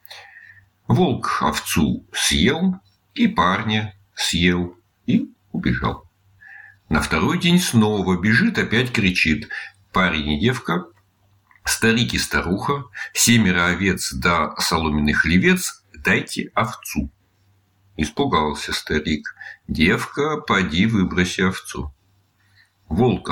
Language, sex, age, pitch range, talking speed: Russian, male, 60-79, 90-125 Hz, 90 wpm